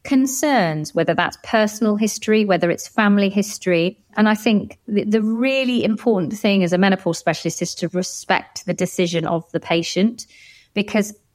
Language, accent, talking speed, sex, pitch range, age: English, British, 160 wpm, female, 180-240 Hz, 30-49